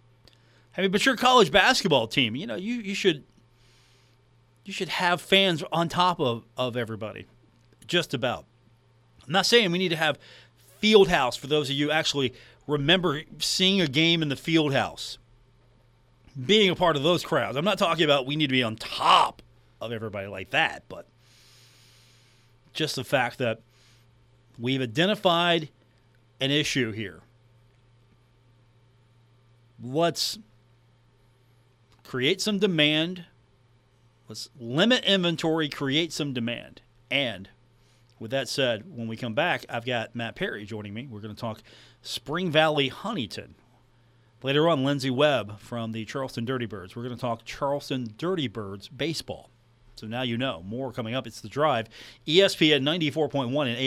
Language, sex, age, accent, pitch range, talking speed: English, male, 40-59, American, 115-155 Hz, 155 wpm